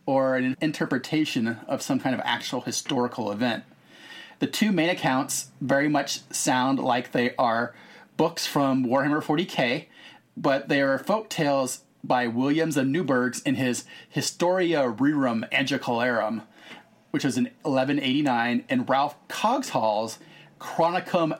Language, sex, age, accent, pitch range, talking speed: English, male, 30-49, American, 130-190 Hz, 130 wpm